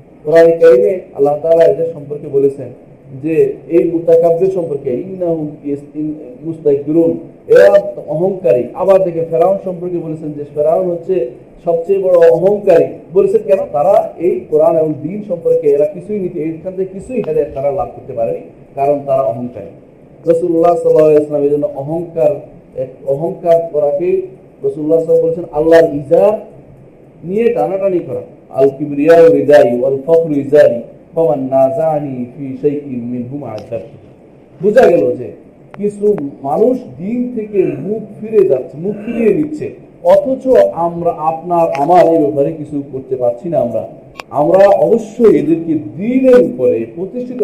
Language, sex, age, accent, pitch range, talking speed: Bengali, male, 40-59, native, 145-200 Hz, 50 wpm